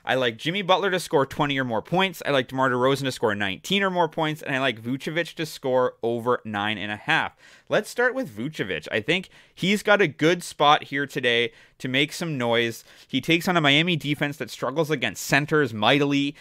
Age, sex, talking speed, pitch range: 30-49, male, 215 wpm, 120-150 Hz